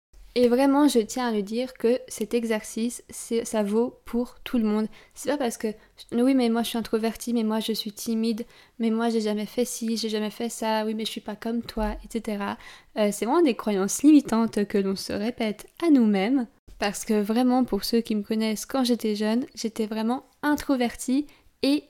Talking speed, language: 210 wpm, French